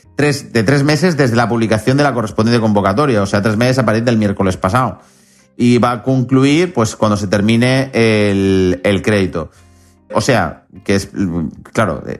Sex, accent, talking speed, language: male, Spanish, 170 wpm, Spanish